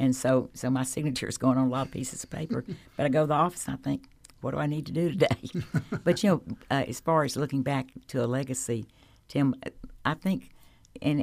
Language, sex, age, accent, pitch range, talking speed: English, female, 60-79, American, 125-140 Hz, 245 wpm